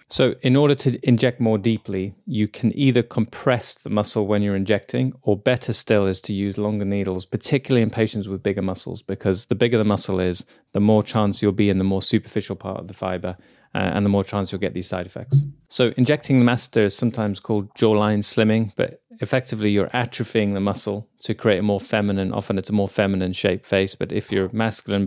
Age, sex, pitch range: 20-39, male, 95-115 Hz